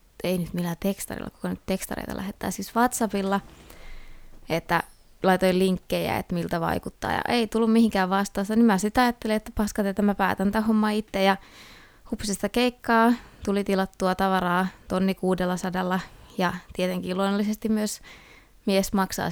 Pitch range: 185-220 Hz